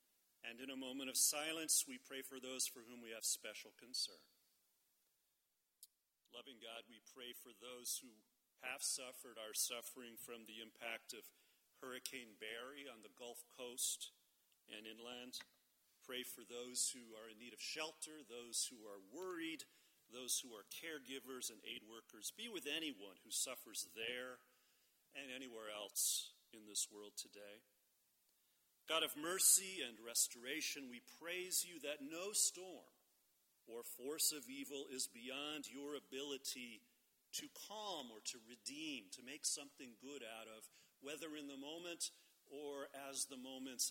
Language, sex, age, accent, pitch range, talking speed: English, male, 40-59, American, 120-155 Hz, 150 wpm